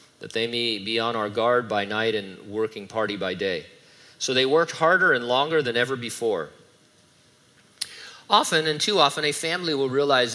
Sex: male